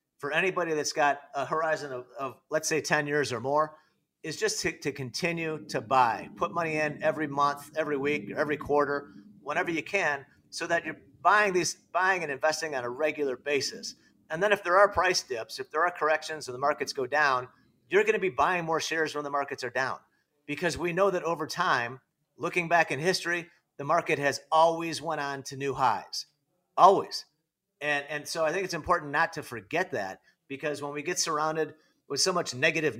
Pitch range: 145-175 Hz